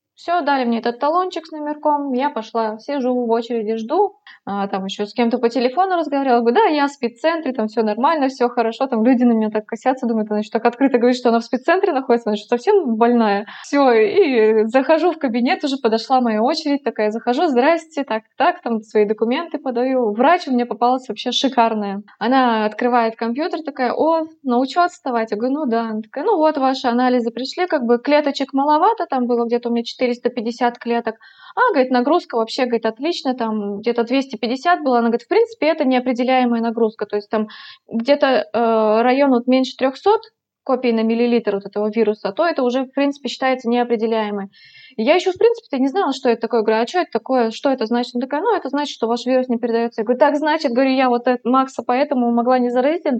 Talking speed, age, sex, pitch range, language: 210 wpm, 20-39, female, 230-285 Hz, Russian